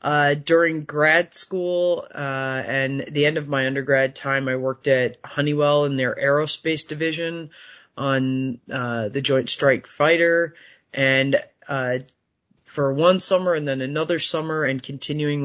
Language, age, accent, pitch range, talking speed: English, 30-49, American, 130-145 Hz, 145 wpm